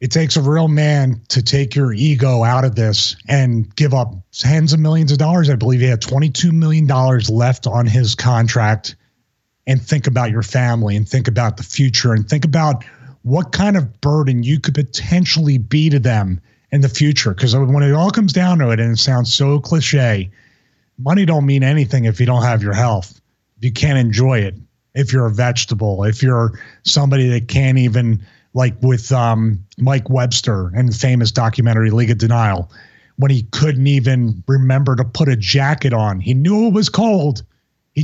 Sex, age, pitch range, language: male, 30-49, 115-145 Hz, English